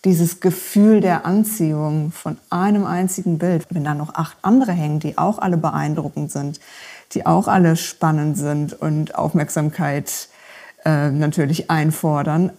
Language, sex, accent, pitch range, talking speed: German, female, German, 170-205 Hz, 140 wpm